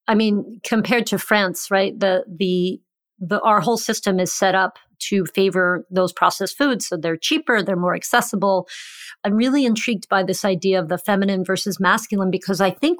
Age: 40-59